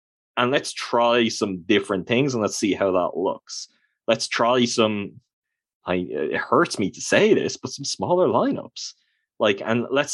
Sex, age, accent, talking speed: male, 20-39, Irish, 170 wpm